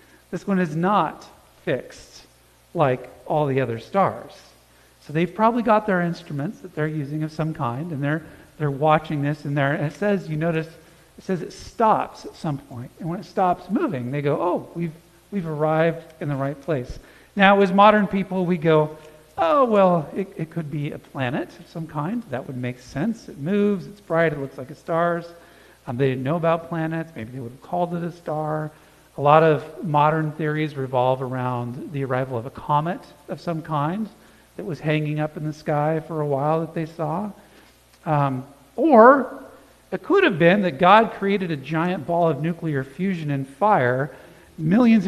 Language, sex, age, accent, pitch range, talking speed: English, male, 40-59, American, 145-190 Hz, 195 wpm